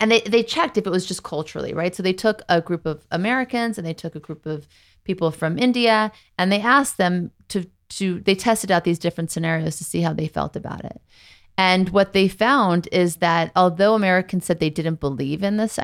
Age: 30-49